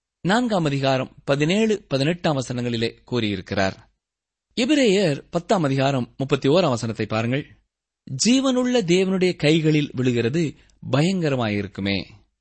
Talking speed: 85 wpm